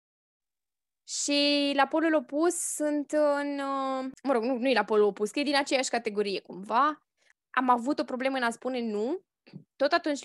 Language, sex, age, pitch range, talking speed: Romanian, female, 10-29, 245-325 Hz, 175 wpm